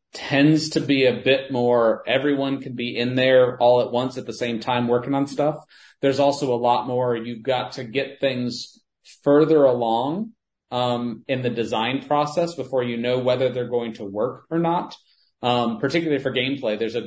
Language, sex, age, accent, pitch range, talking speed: English, male, 30-49, American, 110-135 Hz, 190 wpm